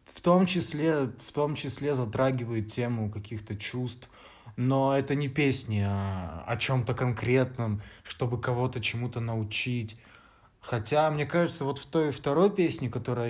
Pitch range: 110-140 Hz